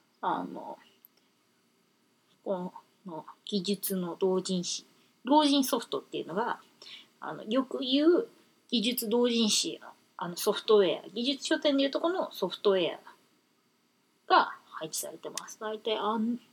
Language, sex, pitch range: Japanese, female, 190-275 Hz